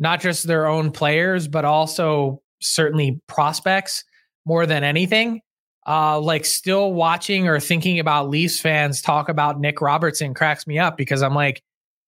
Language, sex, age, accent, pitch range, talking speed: English, male, 20-39, American, 155-195 Hz, 155 wpm